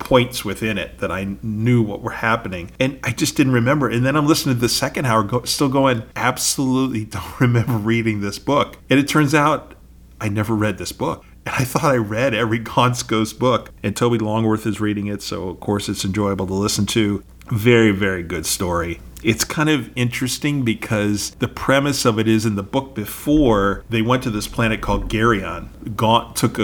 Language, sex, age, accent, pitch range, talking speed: English, male, 40-59, American, 100-125 Hz, 200 wpm